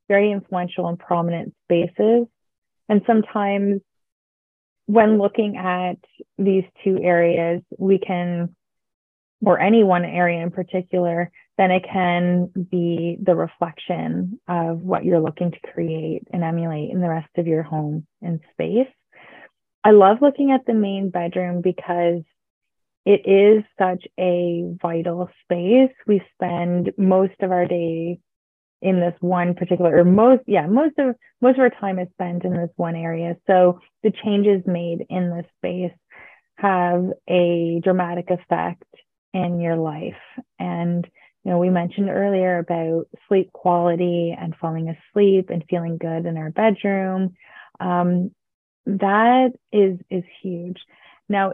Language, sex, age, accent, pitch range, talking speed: Swedish, female, 20-39, American, 170-195 Hz, 140 wpm